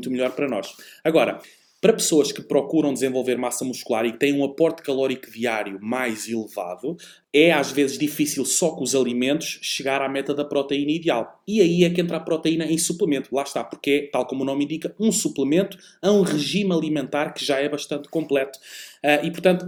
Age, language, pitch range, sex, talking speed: 20-39, Portuguese, 135-165 Hz, male, 200 wpm